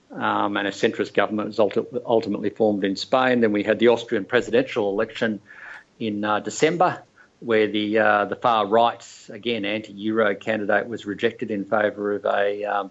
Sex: male